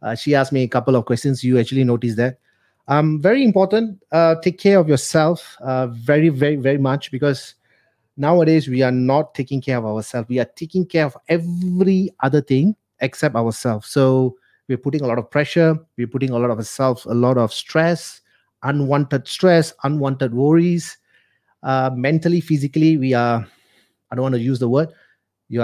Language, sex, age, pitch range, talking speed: English, male, 30-49, 125-150 Hz, 185 wpm